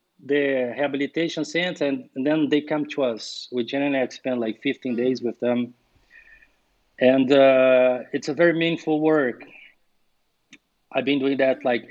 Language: English